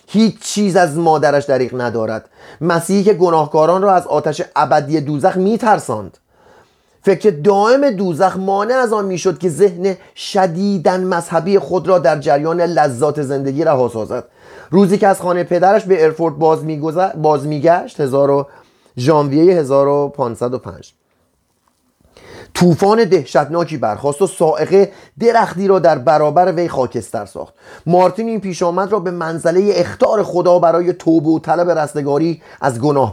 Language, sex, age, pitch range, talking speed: Persian, male, 30-49, 155-190 Hz, 145 wpm